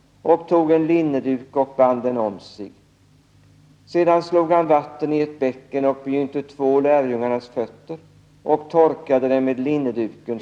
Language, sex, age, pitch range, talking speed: Swedish, male, 60-79, 130-150 Hz, 150 wpm